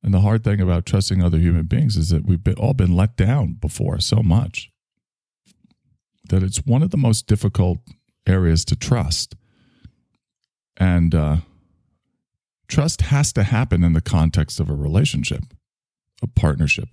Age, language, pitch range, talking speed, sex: 40-59, English, 80-110 Hz, 150 wpm, male